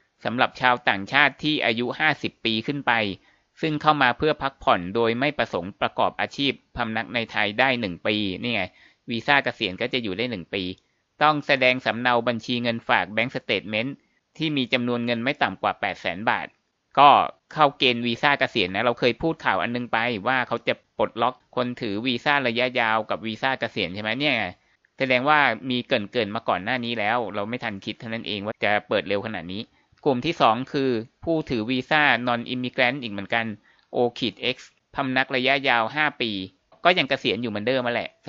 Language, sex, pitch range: Thai, male, 115-130 Hz